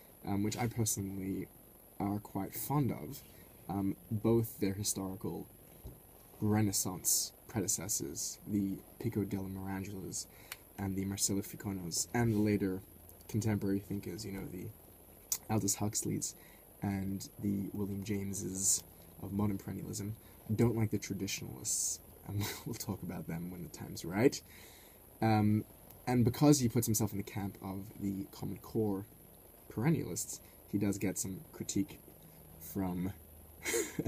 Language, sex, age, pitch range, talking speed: English, male, 20-39, 95-110 Hz, 125 wpm